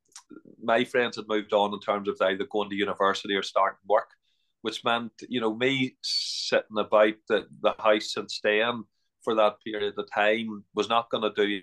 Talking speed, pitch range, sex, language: 190 wpm, 105-120 Hz, male, English